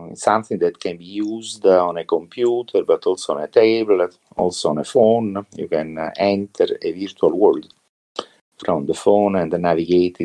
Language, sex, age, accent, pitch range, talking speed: English, male, 50-69, Italian, 85-105 Hz, 165 wpm